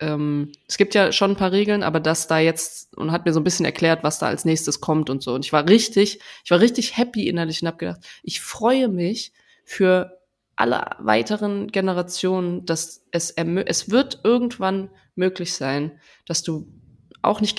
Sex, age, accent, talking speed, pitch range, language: female, 20-39, German, 190 wpm, 160-195 Hz, German